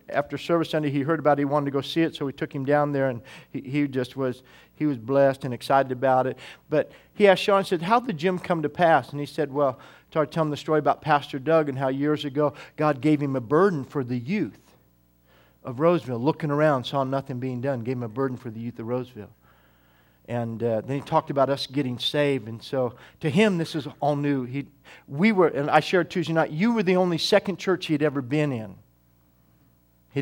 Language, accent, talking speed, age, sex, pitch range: English, American, 240 wpm, 40-59, male, 125-155 Hz